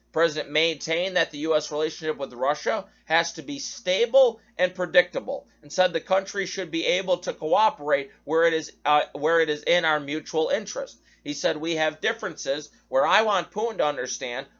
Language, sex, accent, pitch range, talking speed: English, male, American, 150-195 Hz, 185 wpm